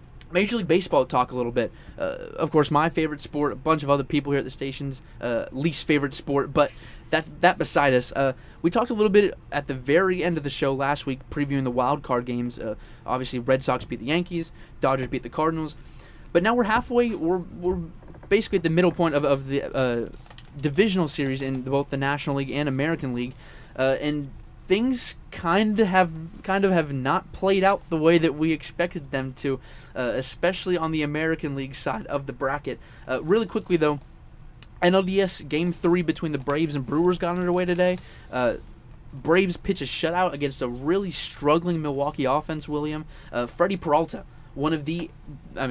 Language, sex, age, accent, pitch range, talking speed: English, male, 20-39, American, 135-175 Hz, 195 wpm